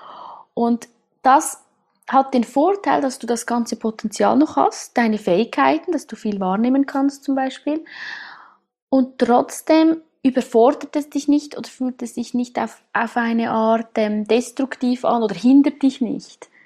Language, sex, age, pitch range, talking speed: German, female, 20-39, 220-260 Hz, 155 wpm